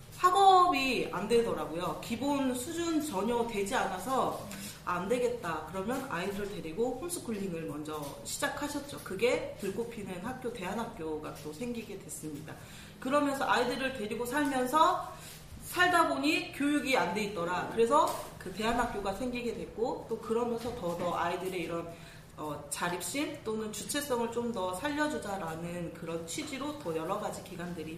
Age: 40-59